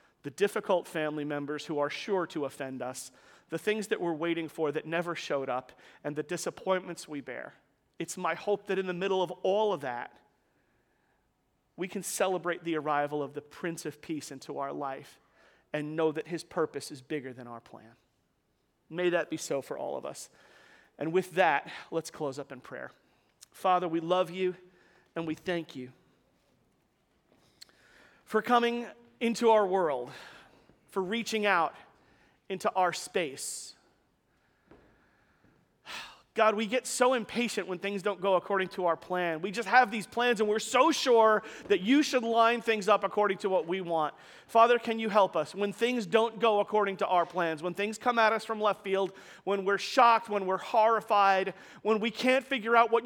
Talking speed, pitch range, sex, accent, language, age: 180 wpm, 160-220 Hz, male, American, English, 40-59